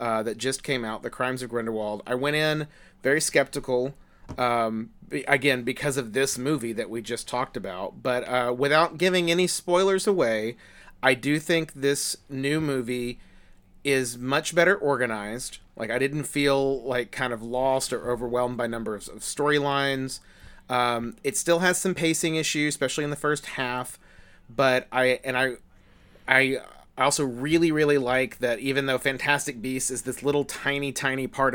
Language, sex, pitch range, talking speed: English, male, 115-140 Hz, 170 wpm